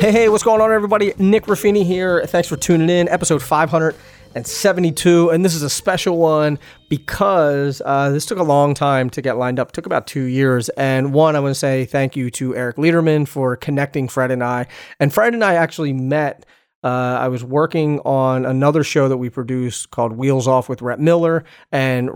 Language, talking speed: English, 205 wpm